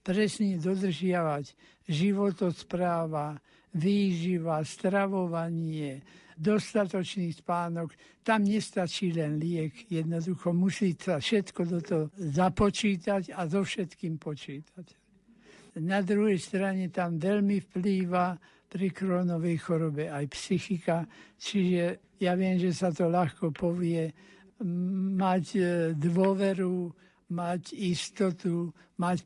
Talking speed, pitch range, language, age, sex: 95 wpm, 170-195 Hz, Slovak, 60-79, male